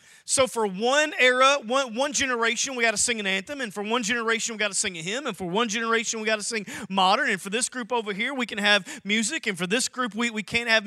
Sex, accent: male, American